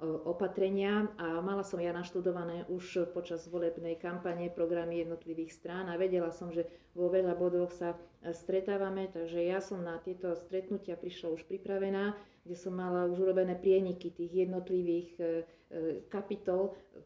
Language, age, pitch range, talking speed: Slovak, 40-59, 170-185 Hz, 140 wpm